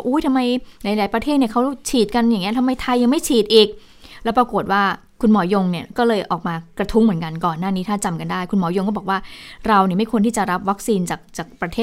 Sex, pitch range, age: female, 175-220 Hz, 20-39